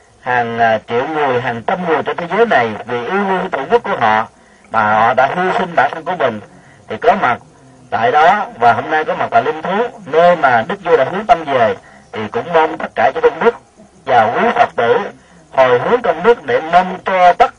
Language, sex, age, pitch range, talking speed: Vietnamese, male, 40-59, 170-240 Hz, 230 wpm